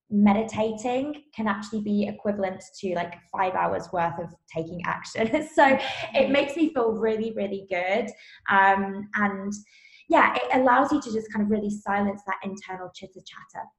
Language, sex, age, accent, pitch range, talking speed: English, female, 20-39, British, 195-255 Hz, 160 wpm